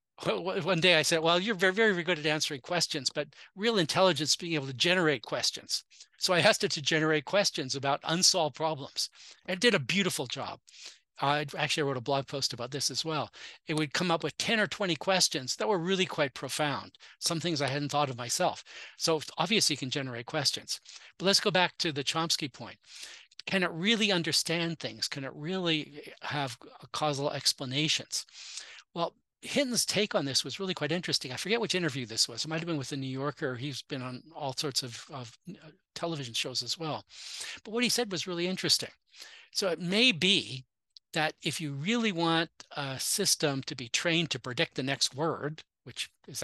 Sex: male